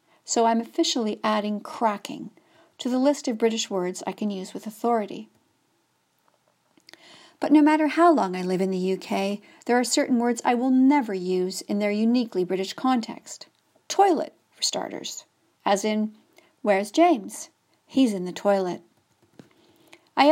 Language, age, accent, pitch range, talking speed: English, 50-69, American, 205-290 Hz, 150 wpm